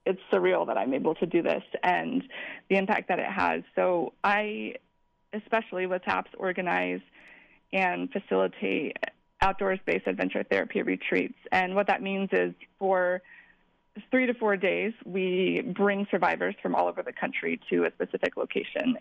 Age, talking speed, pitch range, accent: 20-39, 150 wpm, 180-220 Hz, American